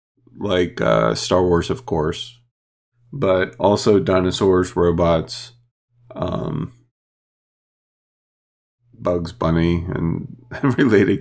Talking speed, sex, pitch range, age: 80 wpm, male, 85-120 Hz, 40-59